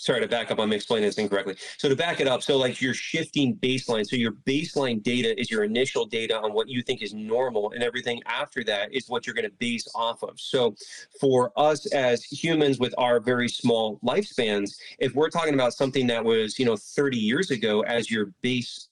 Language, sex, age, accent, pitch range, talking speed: English, male, 30-49, American, 115-140 Hz, 220 wpm